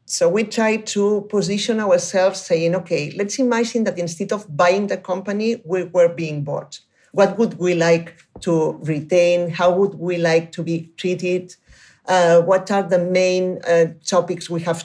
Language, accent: German, Spanish